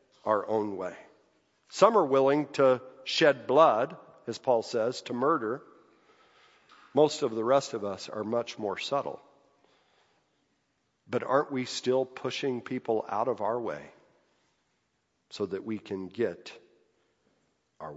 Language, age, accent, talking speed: English, 50-69, American, 135 wpm